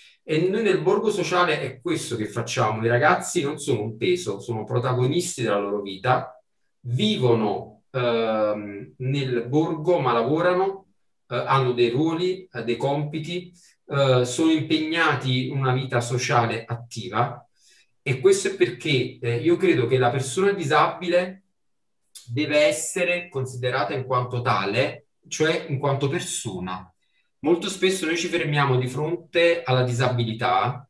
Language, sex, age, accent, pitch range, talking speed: Italian, male, 40-59, native, 120-170 Hz, 140 wpm